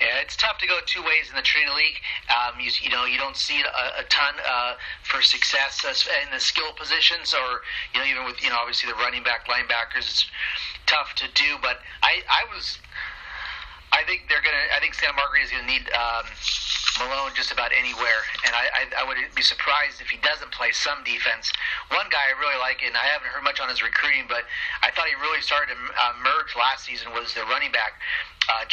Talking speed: 225 wpm